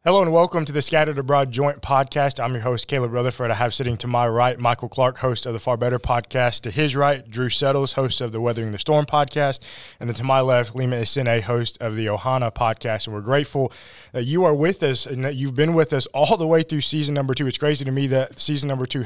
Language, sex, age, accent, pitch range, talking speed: English, male, 20-39, American, 130-150 Hz, 250 wpm